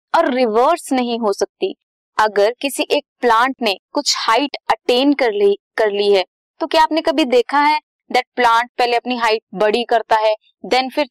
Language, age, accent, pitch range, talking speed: Hindi, 20-39, native, 220-330 Hz, 185 wpm